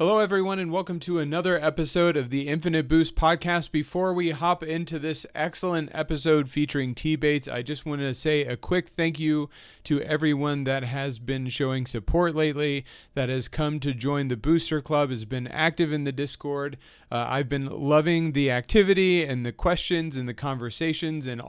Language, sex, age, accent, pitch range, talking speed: English, male, 30-49, American, 130-160 Hz, 185 wpm